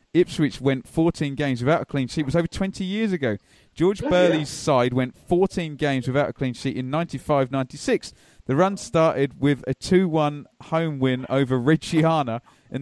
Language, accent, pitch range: English, British, 125-165 Hz